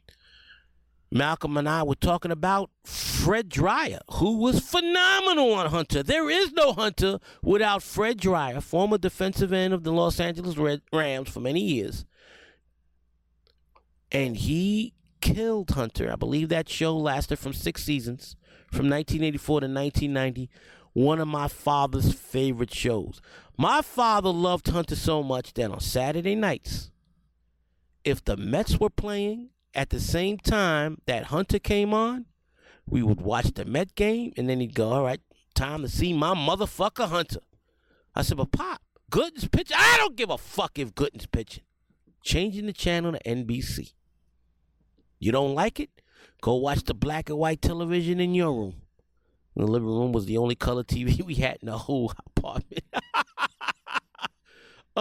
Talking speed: 155 wpm